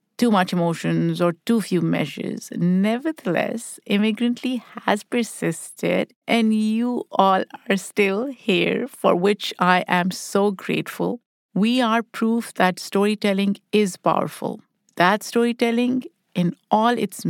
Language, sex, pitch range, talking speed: English, female, 185-235 Hz, 120 wpm